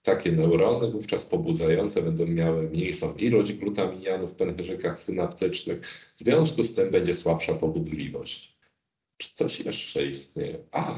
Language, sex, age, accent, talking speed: Polish, male, 40-59, native, 130 wpm